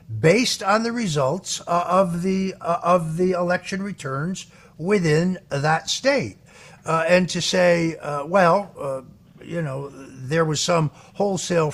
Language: English